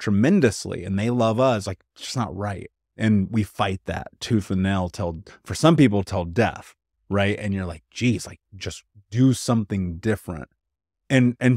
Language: English